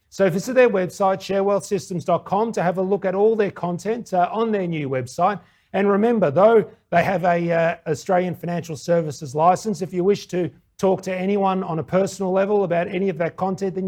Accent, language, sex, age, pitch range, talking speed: Australian, English, male, 40-59, 160-200 Hz, 200 wpm